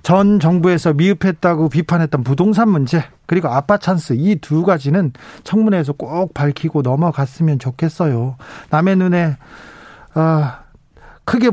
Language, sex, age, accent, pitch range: Korean, male, 40-59, native, 140-190 Hz